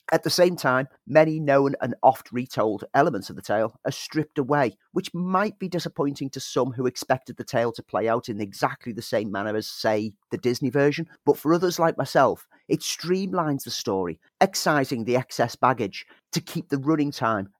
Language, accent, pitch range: English, British, 115-150 Hz